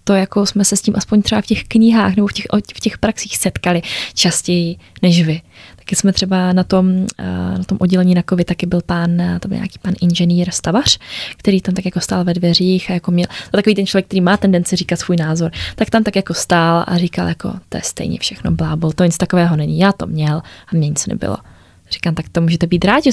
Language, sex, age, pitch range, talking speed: Czech, female, 20-39, 175-210 Hz, 230 wpm